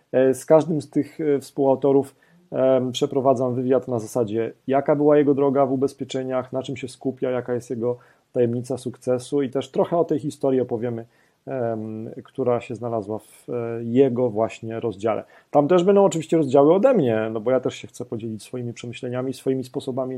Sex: male